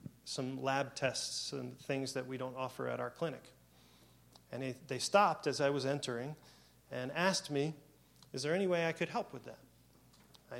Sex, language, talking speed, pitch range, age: male, English, 180 wpm, 125-150 Hz, 30-49